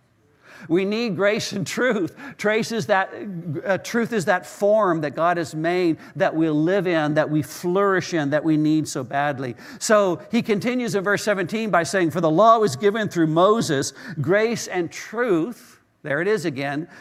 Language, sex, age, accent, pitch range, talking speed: English, male, 60-79, American, 135-180 Hz, 175 wpm